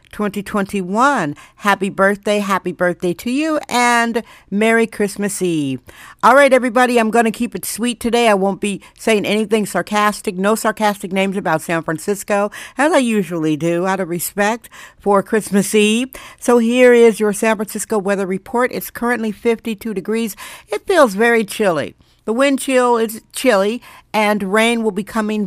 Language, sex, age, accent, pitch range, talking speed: English, female, 60-79, American, 190-235 Hz, 165 wpm